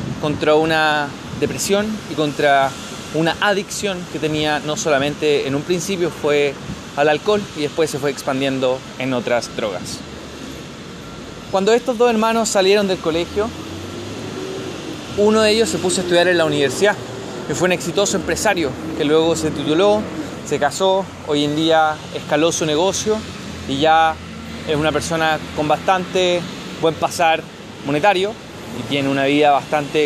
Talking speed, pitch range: 150 wpm, 145-185 Hz